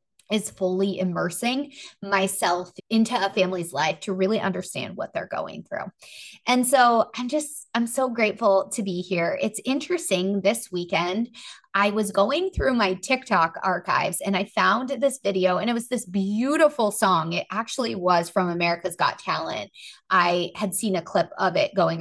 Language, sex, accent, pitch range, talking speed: English, female, American, 185-230 Hz, 170 wpm